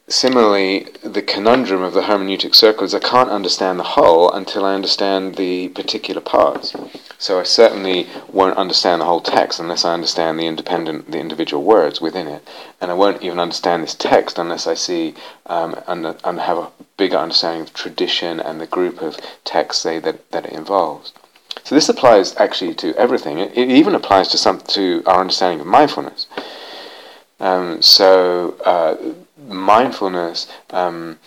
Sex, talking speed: male, 165 wpm